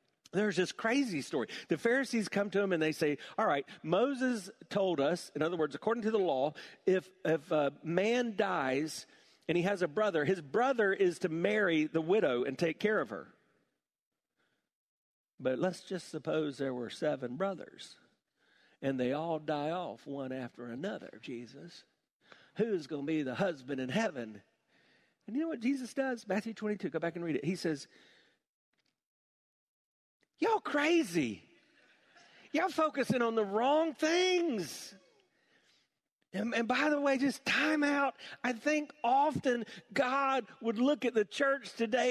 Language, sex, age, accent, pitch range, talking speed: English, male, 50-69, American, 180-300 Hz, 160 wpm